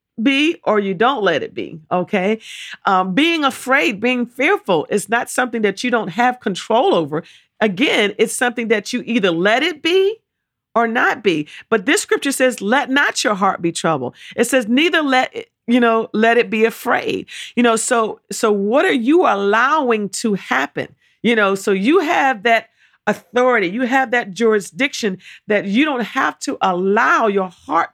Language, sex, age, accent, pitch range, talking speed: English, female, 50-69, American, 215-280 Hz, 180 wpm